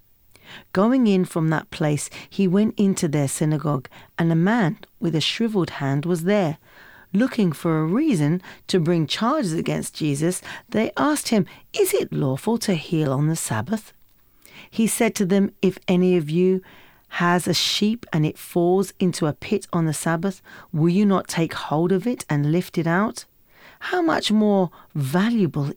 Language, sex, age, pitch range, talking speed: English, female, 40-59, 160-210 Hz, 170 wpm